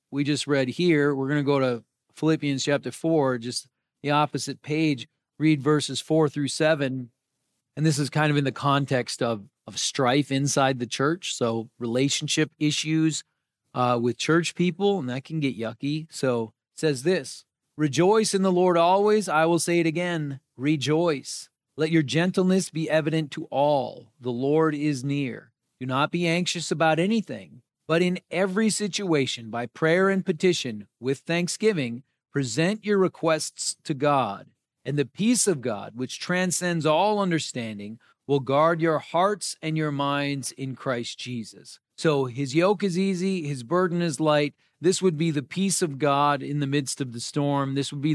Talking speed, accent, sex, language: 170 wpm, American, male, English